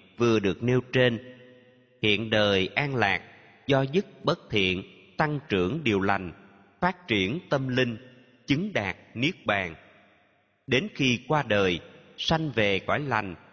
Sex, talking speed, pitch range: male, 140 wpm, 100-140 Hz